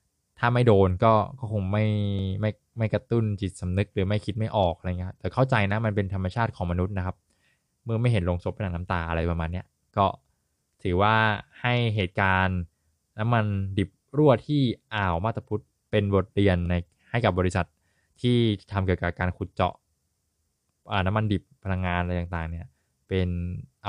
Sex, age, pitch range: male, 20-39, 90-110 Hz